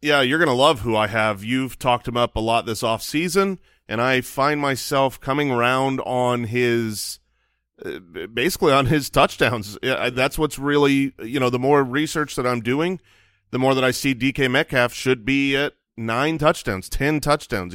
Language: English